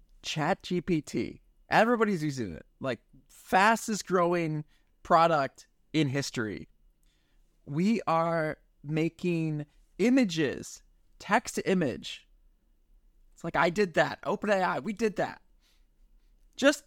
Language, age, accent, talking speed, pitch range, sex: English, 20-39, American, 105 wpm, 120-185 Hz, male